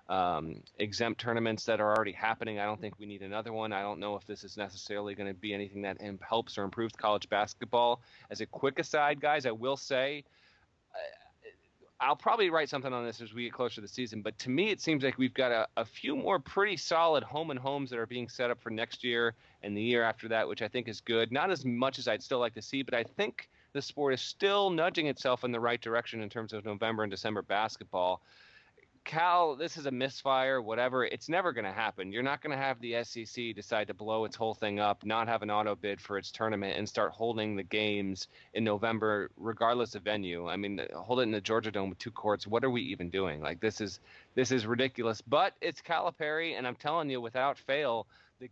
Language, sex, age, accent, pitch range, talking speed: English, male, 30-49, American, 105-130 Hz, 235 wpm